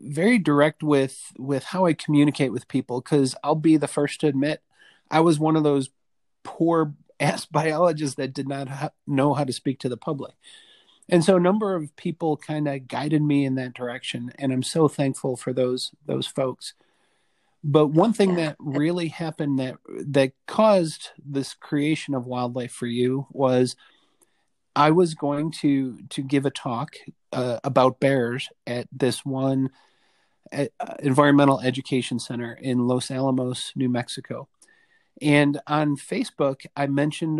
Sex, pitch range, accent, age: male, 130-155 Hz, American, 40-59